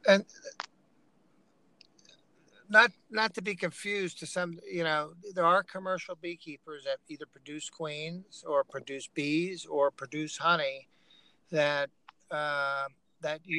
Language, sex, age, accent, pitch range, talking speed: English, male, 60-79, American, 140-170 Hz, 120 wpm